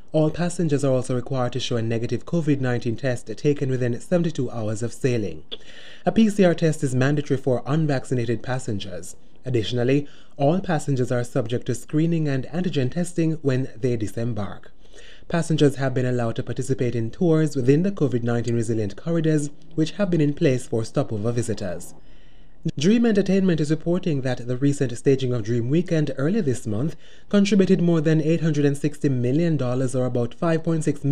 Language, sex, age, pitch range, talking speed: English, male, 20-39, 120-155 Hz, 155 wpm